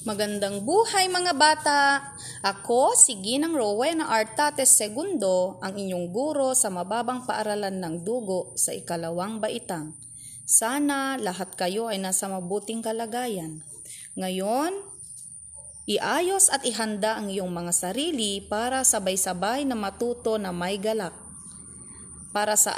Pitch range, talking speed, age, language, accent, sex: 185-255 Hz, 120 wpm, 20-39, Filipino, native, female